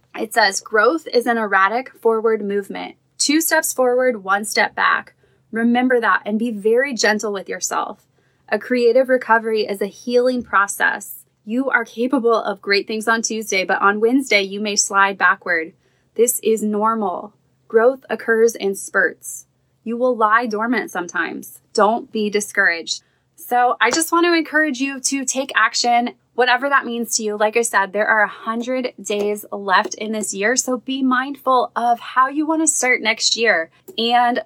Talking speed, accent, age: 170 wpm, American, 20-39